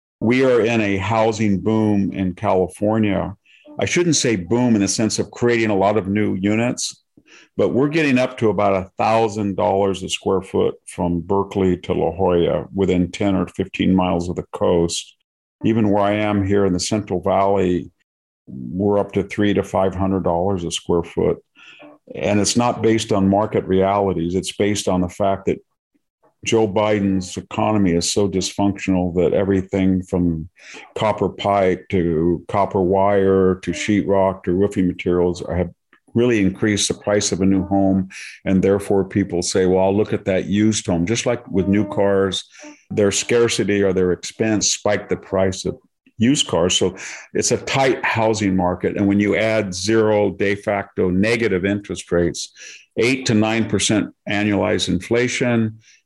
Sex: male